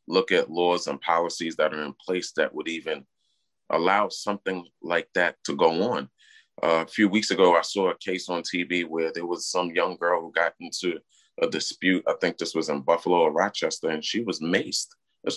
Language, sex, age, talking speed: English, male, 30-49, 210 wpm